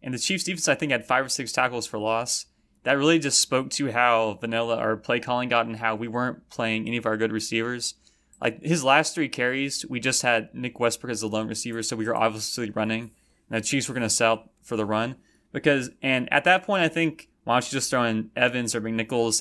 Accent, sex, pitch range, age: American, male, 115-140 Hz, 20-39